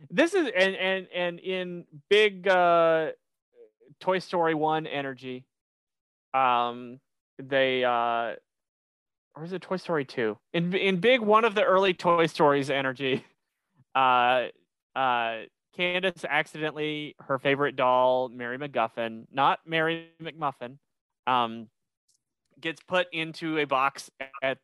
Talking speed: 120 wpm